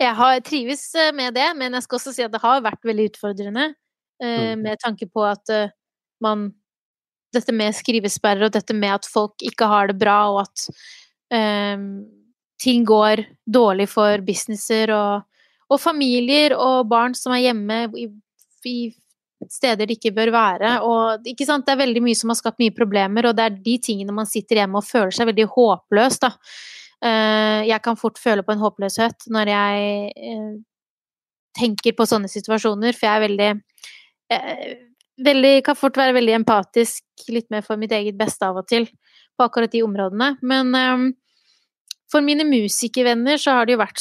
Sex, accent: female, Swedish